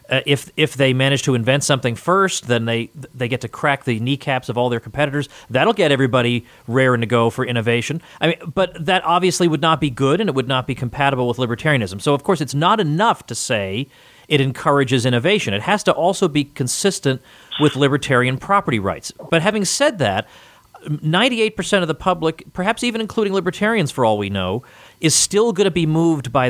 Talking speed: 200 wpm